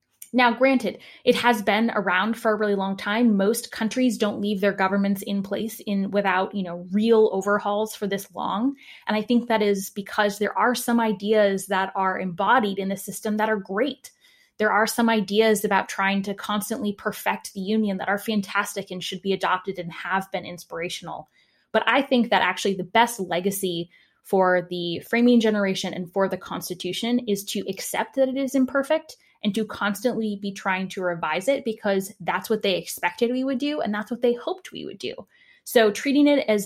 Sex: female